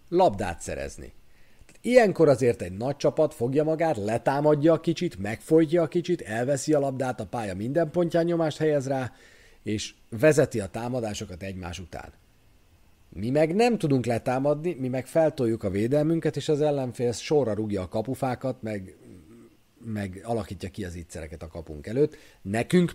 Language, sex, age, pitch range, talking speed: Hungarian, male, 40-59, 105-150 Hz, 150 wpm